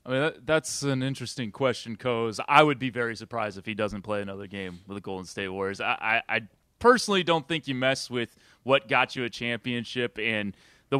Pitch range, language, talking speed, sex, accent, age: 110-135 Hz, English, 215 wpm, male, American, 30-49